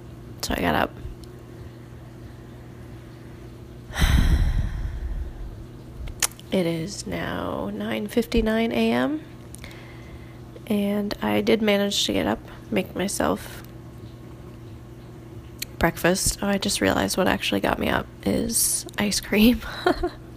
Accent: American